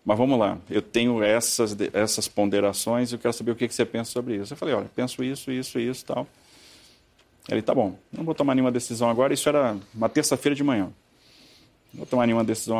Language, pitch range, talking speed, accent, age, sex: Portuguese, 105-130 Hz, 220 wpm, Brazilian, 40-59, male